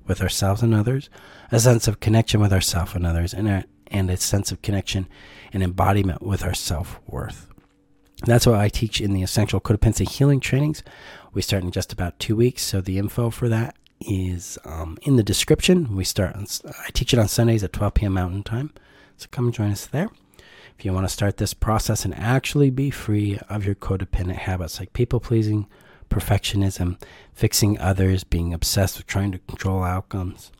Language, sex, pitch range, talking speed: English, male, 95-120 Hz, 190 wpm